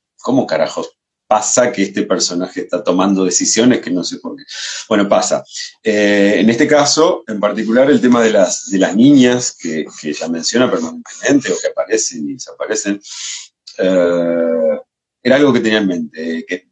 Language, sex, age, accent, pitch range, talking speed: Spanish, male, 40-59, Argentinian, 95-165 Hz, 170 wpm